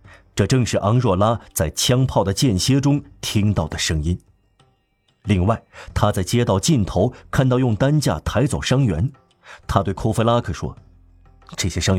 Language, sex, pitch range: Chinese, male, 90-125 Hz